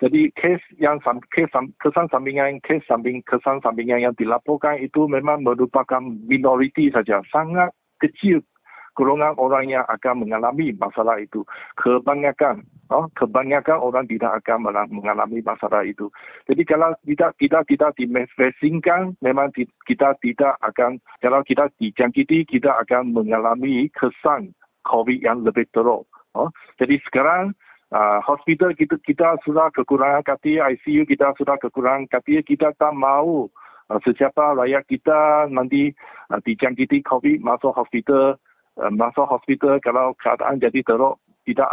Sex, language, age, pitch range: male, English, 50-69, 125-150 Hz